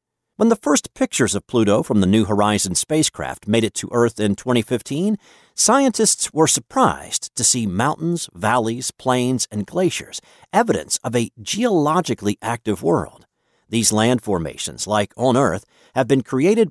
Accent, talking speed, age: American, 150 wpm, 50-69